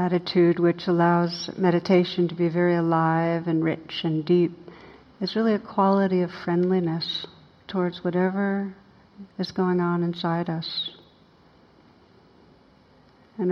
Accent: American